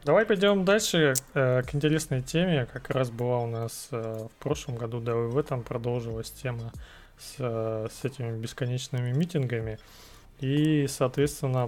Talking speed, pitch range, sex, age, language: 150 wpm, 120-145 Hz, male, 20-39, Russian